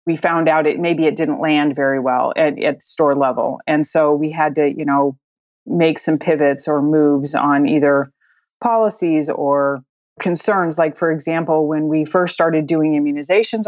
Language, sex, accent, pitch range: English, female, American, 155-190 Hz